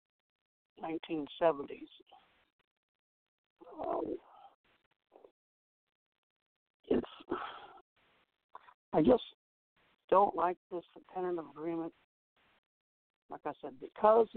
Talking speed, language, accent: 60 wpm, English, American